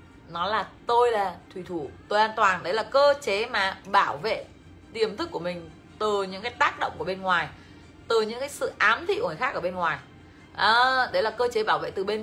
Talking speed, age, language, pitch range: 240 wpm, 20-39, Vietnamese, 200-290 Hz